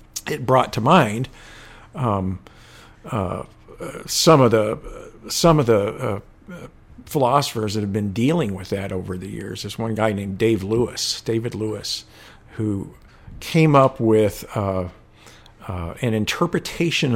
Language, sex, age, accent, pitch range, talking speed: English, male, 50-69, American, 105-130 Hz, 135 wpm